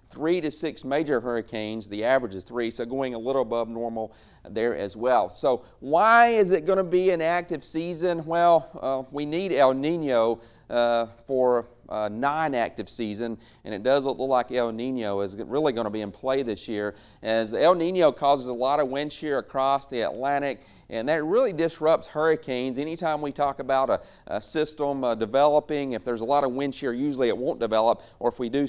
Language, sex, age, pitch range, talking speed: English, male, 40-59, 115-145 Hz, 205 wpm